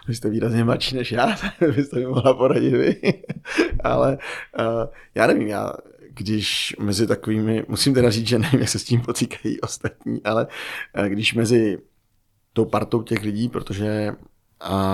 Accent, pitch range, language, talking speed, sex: native, 105-125 Hz, Czech, 170 wpm, male